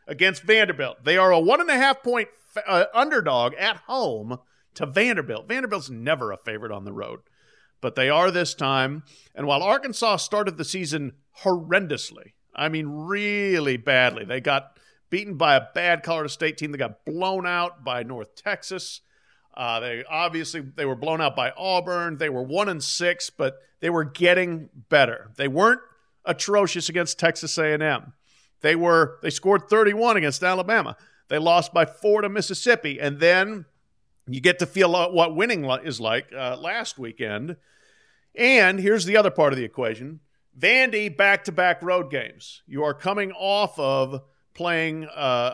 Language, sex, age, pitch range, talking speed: English, male, 50-69, 145-195 Hz, 160 wpm